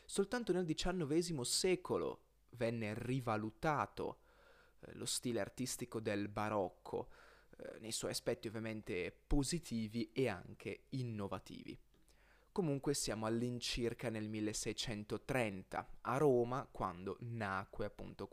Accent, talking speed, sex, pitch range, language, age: native, 100 wpm, male, 110-160 Hz, Italian, 20-39